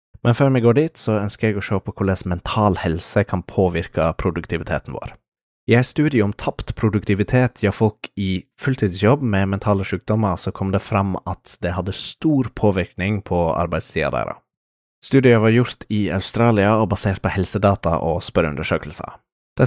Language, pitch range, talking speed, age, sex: English, 95-115 Hz, 160 wpm, 20-39, male